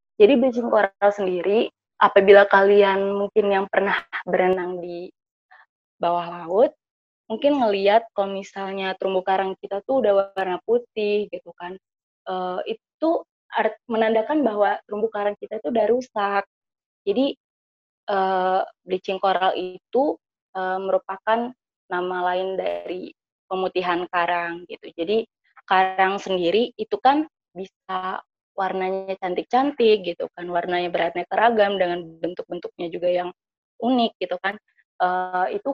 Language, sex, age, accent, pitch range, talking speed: Indonesian, female, 20-39, native, 185-225 Hz, 120 wpm